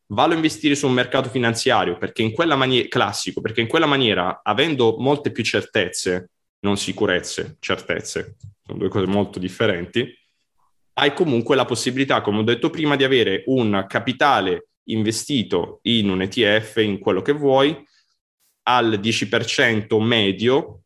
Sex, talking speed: male, 145 wpm